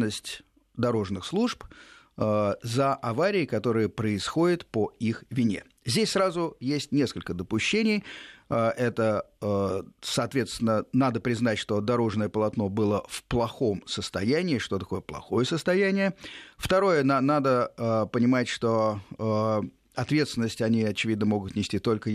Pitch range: 105-140 Hz